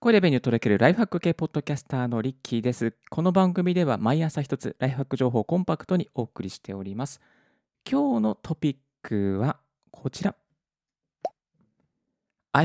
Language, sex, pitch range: Japanese, male, 130-185 Hz